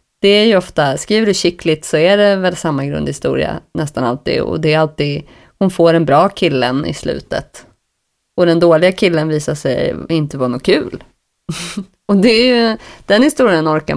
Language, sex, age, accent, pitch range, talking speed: English, female, 30-49, Swedish, 160-200 Hz, 185 wpm